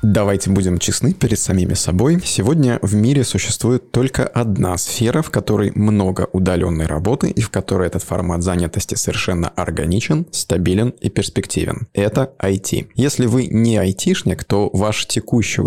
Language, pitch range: Russian, 95-120 Hz